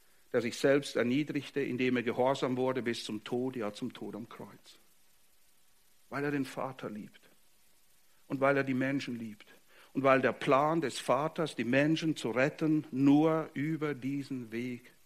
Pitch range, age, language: 125-180 Hz, 60-79, English